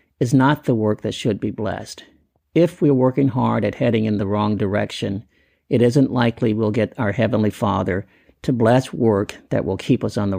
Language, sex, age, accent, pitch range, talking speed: English, male, 50-69, American, 105-125 Hz, 200 wpm